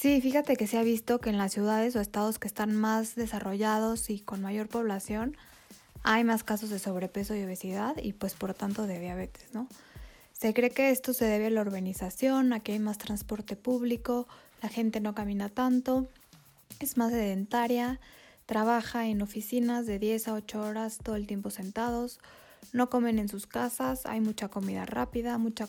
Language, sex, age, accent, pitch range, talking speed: Spanish, female, 20-39, Mexican, 210-240 Hz, 185 wpm